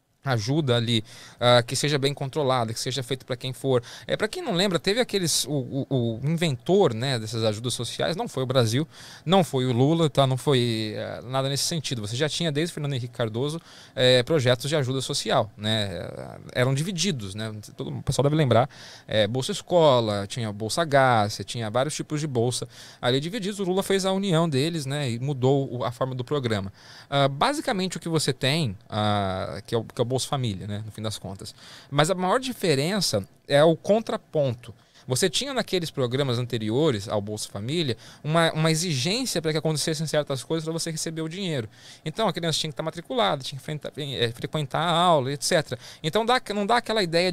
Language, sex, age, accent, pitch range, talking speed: English, male, 20-39, Brazilian, 120-165 Hz, 200 wpm